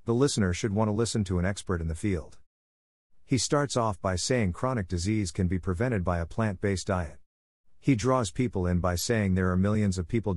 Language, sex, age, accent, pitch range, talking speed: English, male, 50-69, American, 90-110 Hz, 215 wpm